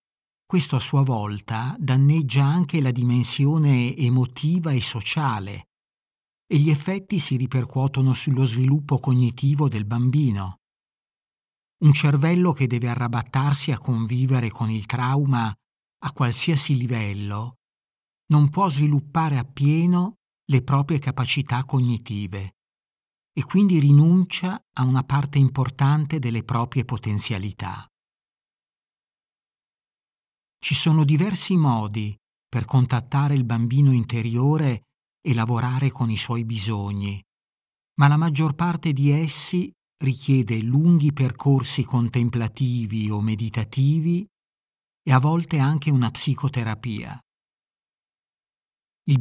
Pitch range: 120-150 Hz